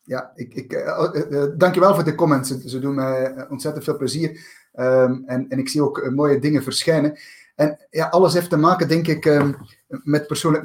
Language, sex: Dutch, male